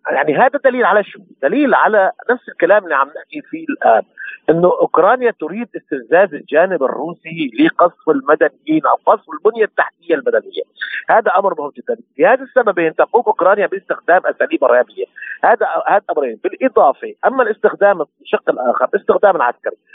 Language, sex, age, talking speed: Arabic, male, 50-69, 145 wpm